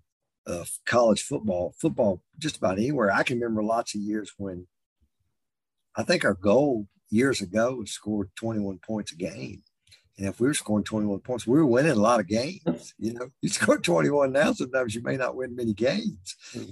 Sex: male